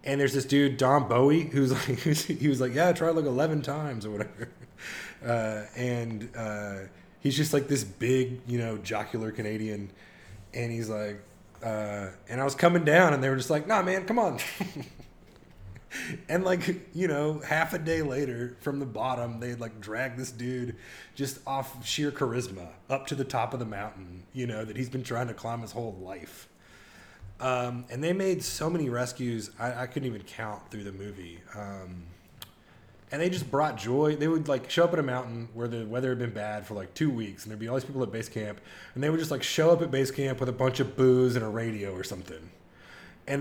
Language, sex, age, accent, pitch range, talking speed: English, male, 20-39, American, 105-140 Hz, 215 wpm